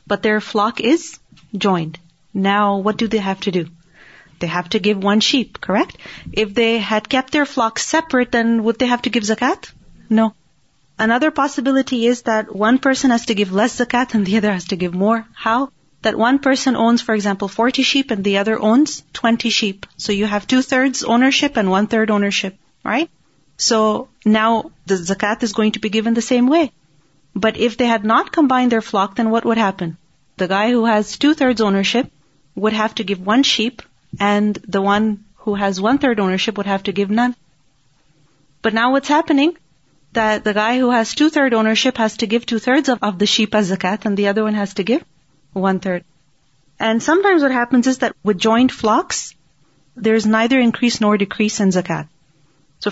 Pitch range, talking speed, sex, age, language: 200-245 Hz, 195 wpm, female, 30-49, English